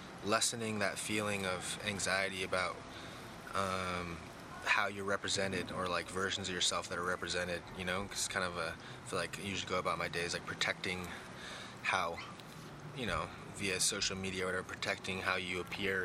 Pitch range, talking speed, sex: 95-105 Hz, 180 wpm, male